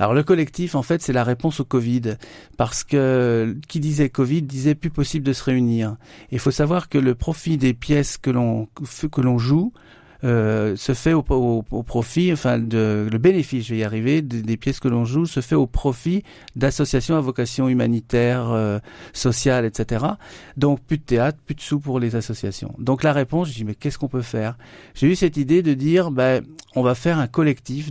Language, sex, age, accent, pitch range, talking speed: French, male, 50-69, French, 115-145 Hz, 215 wpm